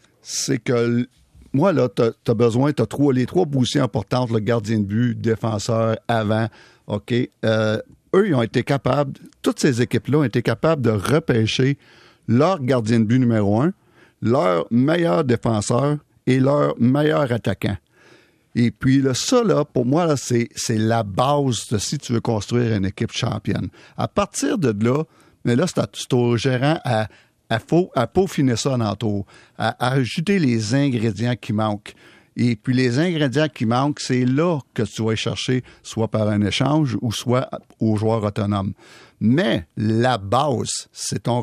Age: 50-69